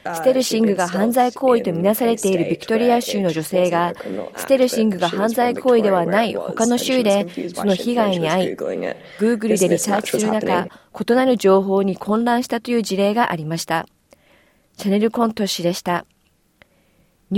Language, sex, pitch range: Japanese, female, 190-240 Hz